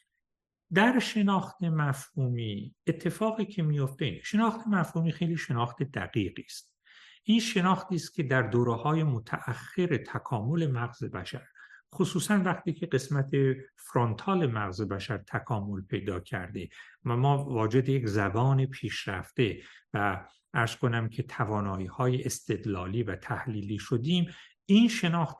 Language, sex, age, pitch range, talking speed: Persian, male, 60-79, 120-170 Hz, 115 wpm